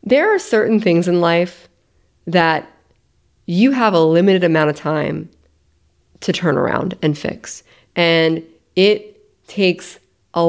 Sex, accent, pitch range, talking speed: female, American, 160-205 Hz, 130 wpm